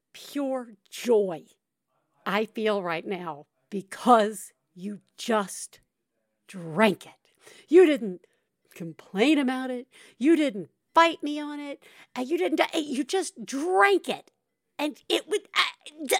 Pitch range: 205-310 Hz